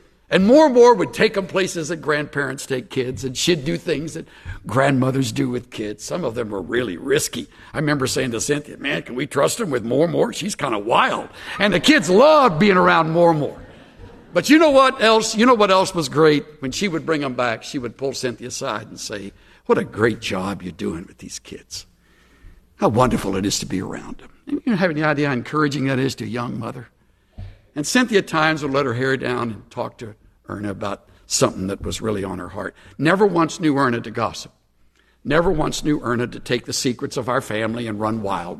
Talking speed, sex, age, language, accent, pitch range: 230 wpm, male, 60-79, English, American, 105-160 Hz